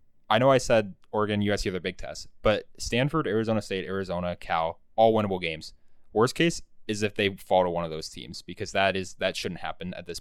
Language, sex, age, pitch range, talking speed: English, male, 20-39, 90-105 Hz, 210 wpm